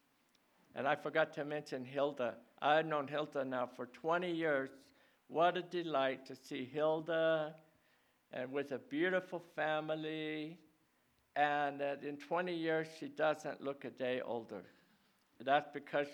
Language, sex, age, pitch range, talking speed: English, male, 60-79, 130-160 Hz, 140 wpm